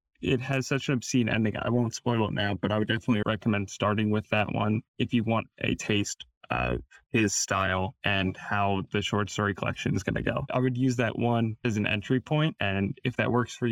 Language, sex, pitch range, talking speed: English, male, 100-120 Hz, 230 wpm